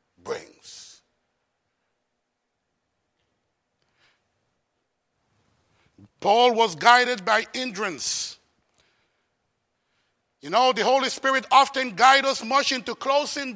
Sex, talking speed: male, 75 wpm